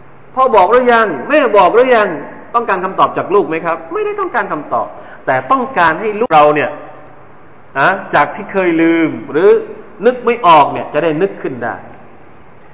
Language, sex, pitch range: Thai, male, 140-235 Hz